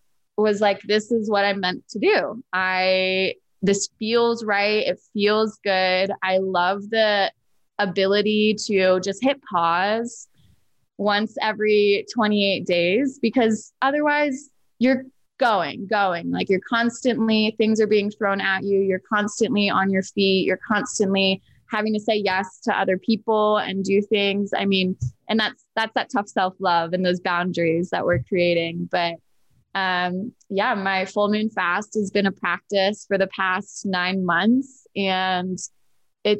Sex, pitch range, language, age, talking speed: female, 185-220 Hz, English, 20-39, 150 wpm